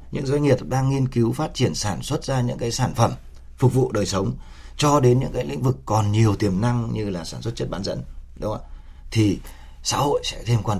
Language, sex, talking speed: Vietnamese, male, 250 wpm